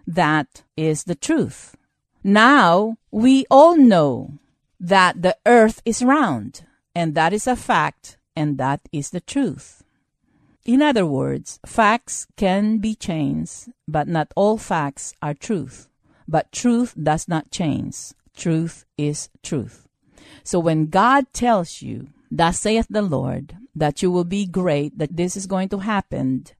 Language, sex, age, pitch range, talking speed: English, female, 50-69, 155-255 Hz, 145 wpm